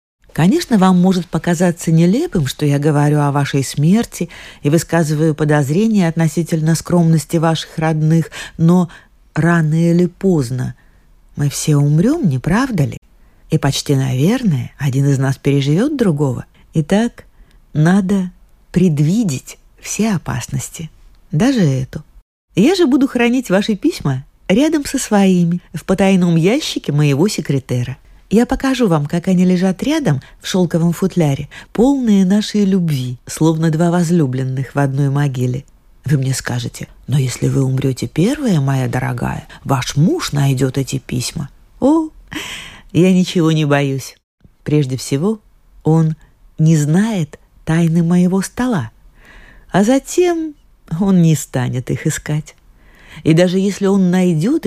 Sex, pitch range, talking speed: female, 145-195 Hz, 125 wpm